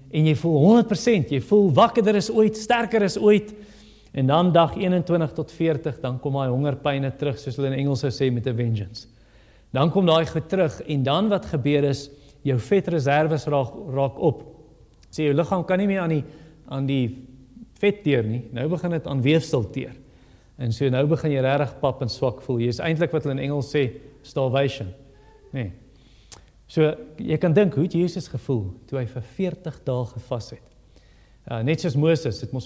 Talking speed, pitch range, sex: 195 wpm, 125-170 Hz, male